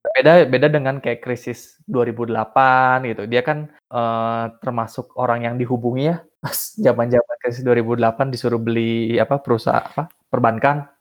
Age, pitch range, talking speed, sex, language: 20-39, 115-130 Hz, 130 wpm, male, Indonesian